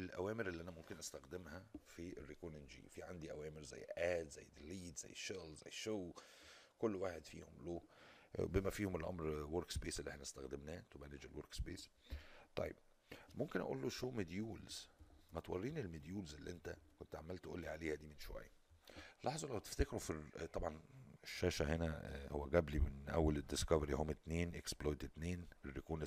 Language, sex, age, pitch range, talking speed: Arabic, male, 50-69, 75-95 Hz, 170 wpm